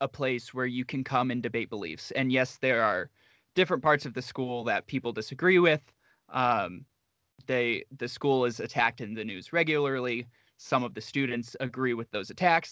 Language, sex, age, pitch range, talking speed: English, male, 20-39, 120-140 Hz, 185 wpm